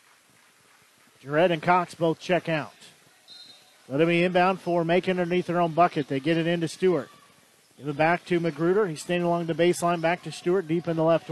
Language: English